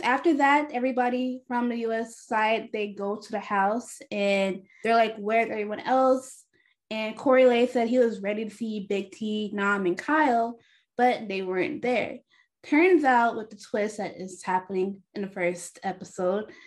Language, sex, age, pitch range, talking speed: English, female, 10-29, 200-260 Hz, 175 wpm